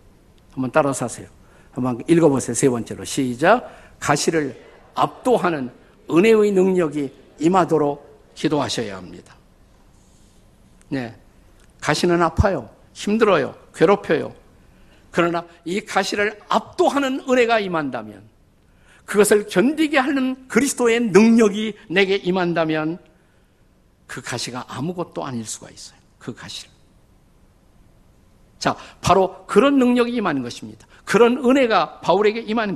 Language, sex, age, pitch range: Korean, male, 50-69, 145-215 Hz